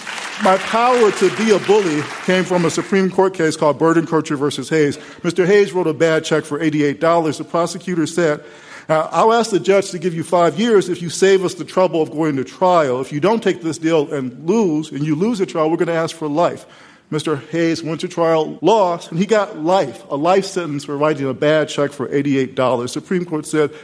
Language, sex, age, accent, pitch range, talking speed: English, male, 50-69, American, 145-185 Hz, 225 wpm